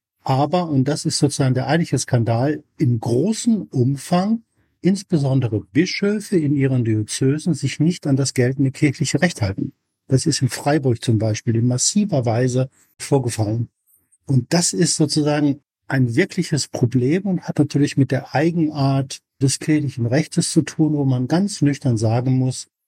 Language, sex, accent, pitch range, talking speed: German, male, German, 125-150 Hz, 150 wpm